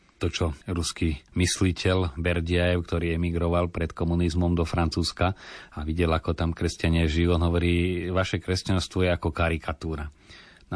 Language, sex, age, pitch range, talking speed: Slovak, male, 30-49, 85-95 Hz, 140 wpm